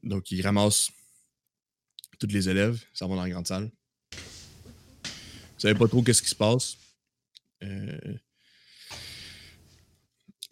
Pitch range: 95-120 Hz